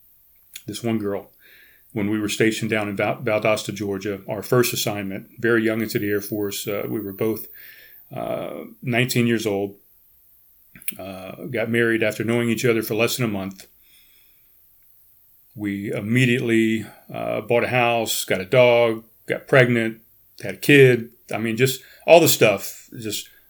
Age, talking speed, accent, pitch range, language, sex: 40-59, 155 wpm, American, 105-125 Hz, English, male